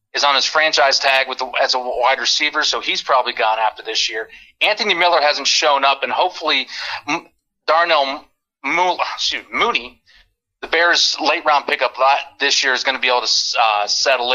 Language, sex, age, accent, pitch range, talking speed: English, male, 30-49, American, 130-170 Hz, 190 wpm